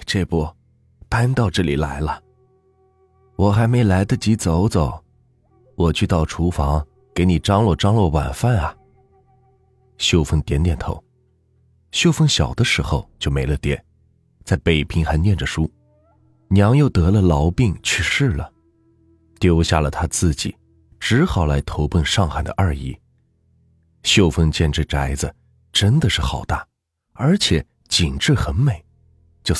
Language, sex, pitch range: Chinese, male, 80-115 Hz